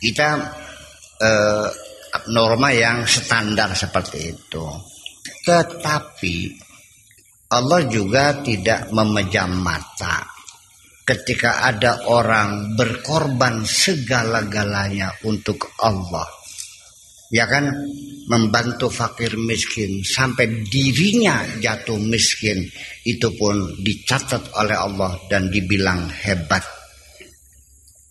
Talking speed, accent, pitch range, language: 80 wpm, native, 100-135 Hz, Indonesian